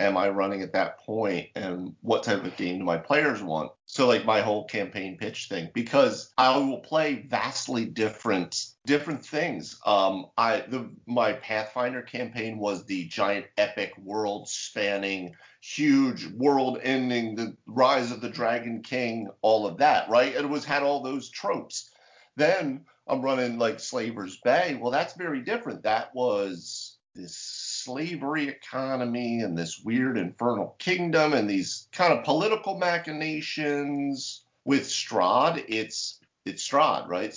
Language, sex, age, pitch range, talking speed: English, male, 40-59, 100-135 Hz, 150 wpm